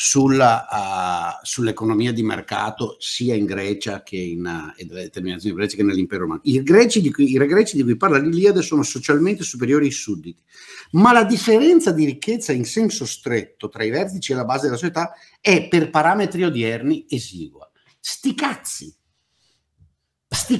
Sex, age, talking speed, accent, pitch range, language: male, 50-69, 165 wpm, native, 105-165 Hz, Italian